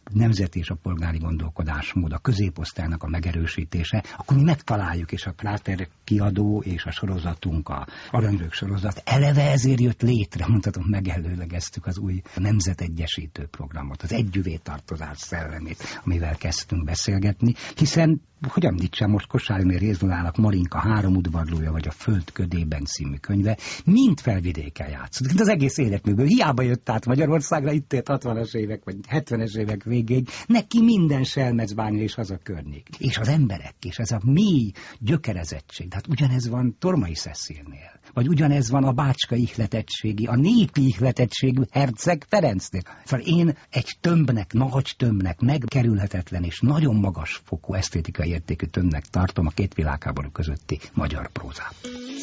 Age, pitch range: 60-79, 85-130 Hz